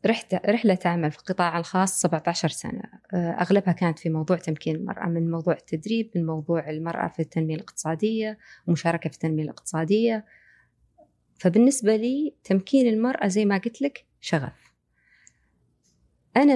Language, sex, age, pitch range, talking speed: Arabic, female, 30-49, 165-210 Hz, 135 wpm